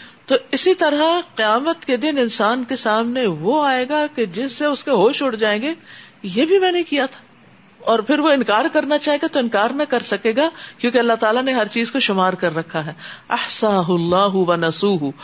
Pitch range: 200-265 Hz